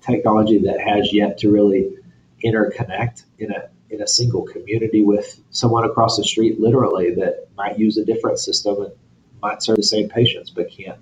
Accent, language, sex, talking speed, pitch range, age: American, English, male, 180 wpm, 105-125 Hz, 40-59